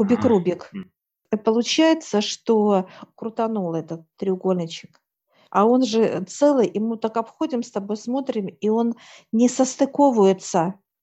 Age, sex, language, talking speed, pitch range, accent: 50-69, female, Russian, 120 wpm, 200-235 Hz, native